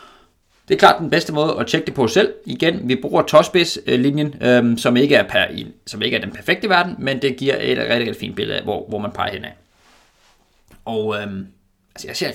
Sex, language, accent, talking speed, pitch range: male, Danish, native, 200 wpm, 110-135 Hz